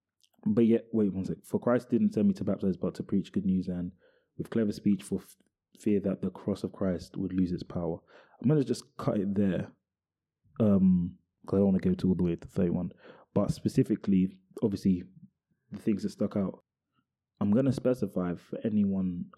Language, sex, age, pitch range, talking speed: English, male, 20-39, 90-115 Hz, 205 wpm